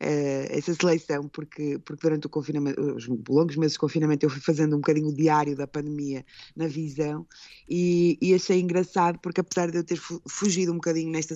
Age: 20-39